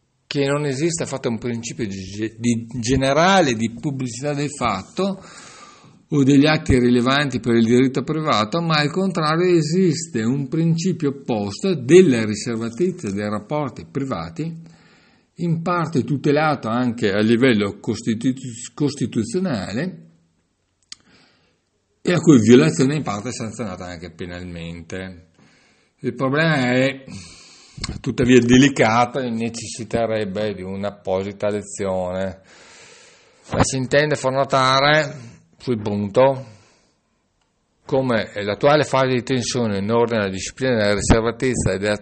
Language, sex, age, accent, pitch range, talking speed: Italian, male, 50-69, native, 110-145 Hz, 115 wpm